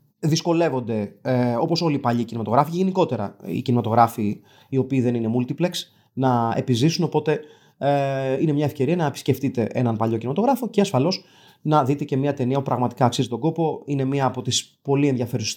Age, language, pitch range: 30-49, Greek, 120-145 Hz